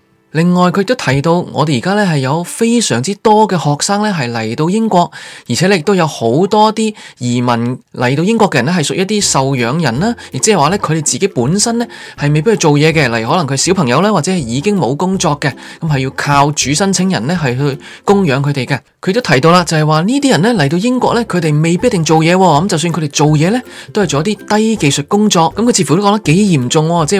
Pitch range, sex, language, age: 145-210 Hz, male, Chinese, 20-39